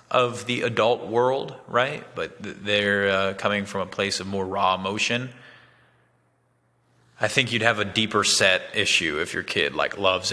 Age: 20-39